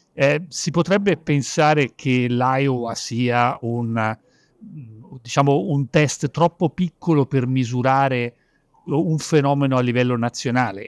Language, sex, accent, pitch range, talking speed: Italian, male, native, 115-150 Hz, 110 wpm